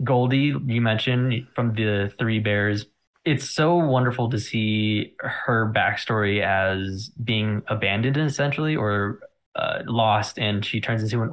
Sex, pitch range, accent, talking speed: male, 105-125 Hz, American, 140 wpm